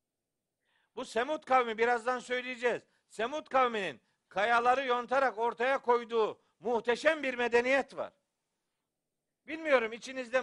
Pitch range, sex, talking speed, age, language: 225-275 Hz, male, 100 wpm, 50-69, Turkish